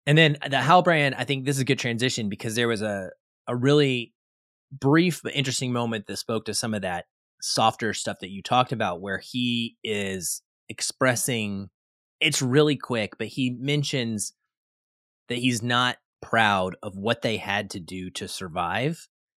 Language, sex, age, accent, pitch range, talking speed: English, male, 30-49, American, 100-130 Hz, 170 wpm